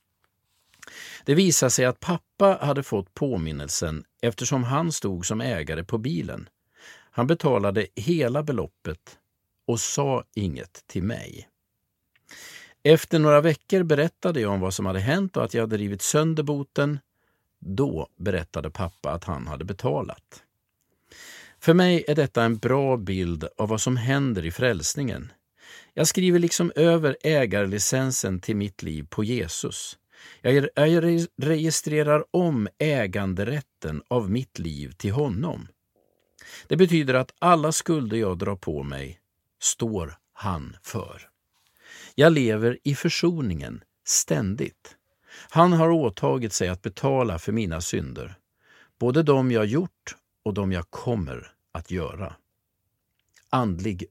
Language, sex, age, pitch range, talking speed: Swedish, male, 50-69, 95-150 Hz, 130 wpm